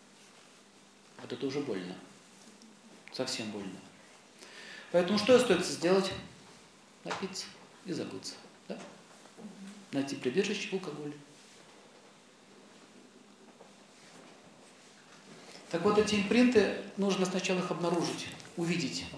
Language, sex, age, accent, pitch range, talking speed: Russian, male, 40-59, native, 145-195 Hz, 80 wpm